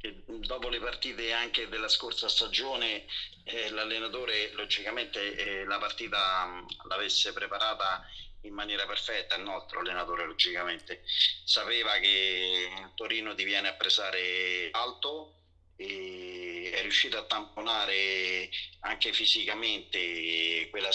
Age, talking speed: 40-59, 110 wpm